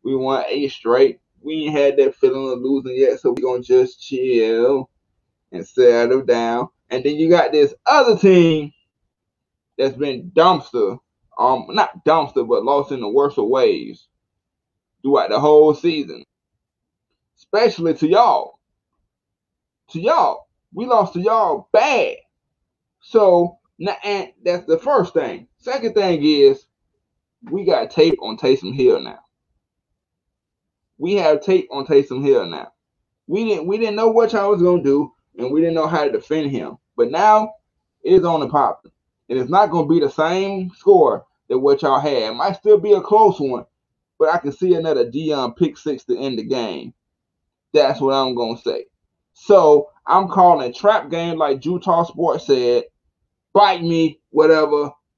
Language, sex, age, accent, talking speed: English, male, 20-39, American, 165 wpm